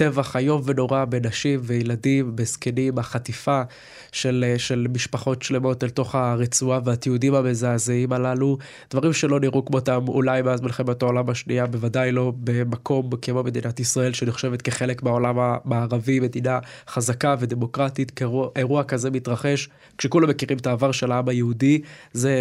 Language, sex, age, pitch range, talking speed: Hebrew, male, 20-39, 125-135 Hz, 135 wpm